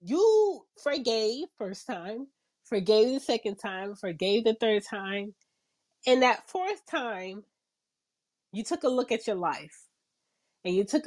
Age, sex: 30-49, female